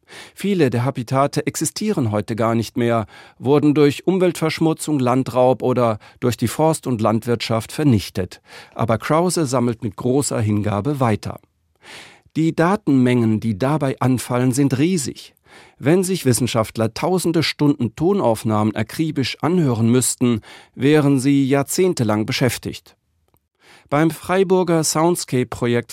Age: 40-59